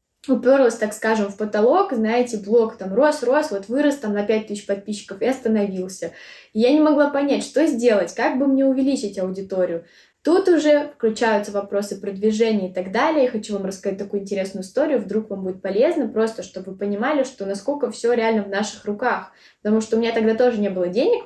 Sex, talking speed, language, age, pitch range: female, 190 wpm, Russian, 20-39, 195-250 Hz